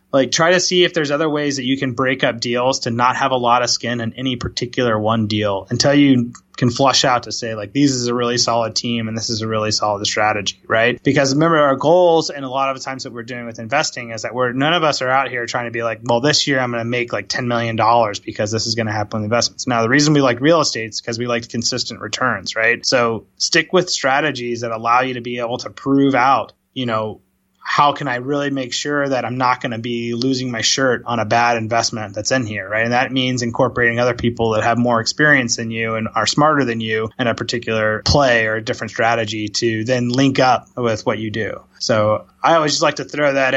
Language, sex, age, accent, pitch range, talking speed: English, male, 20-39, American, 115-135 Hz, 260 wpm